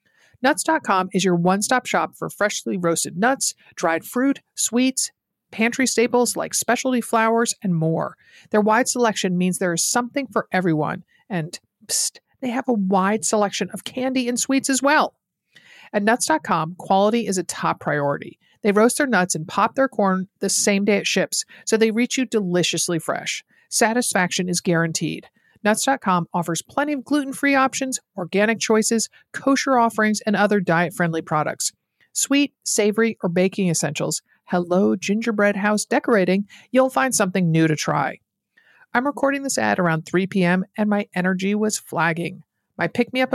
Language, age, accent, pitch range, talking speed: English, 50-69, American, 180-245 Hz, 155 wpm